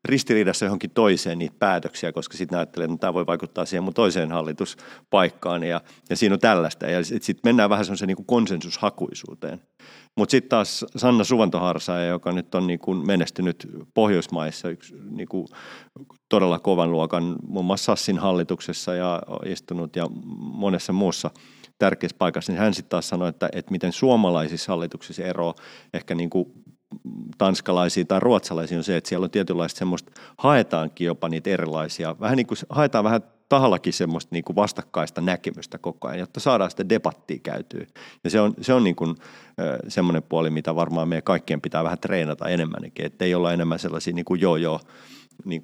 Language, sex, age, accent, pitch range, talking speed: Finnish, male, 40-59, native, 85-105 Hz, 165 wpm